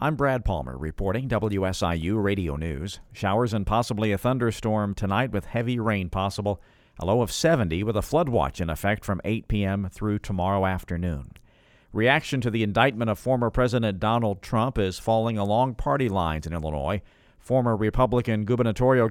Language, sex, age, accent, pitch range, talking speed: English, male, 50-69, American, 95-120 Hz, 165 wpm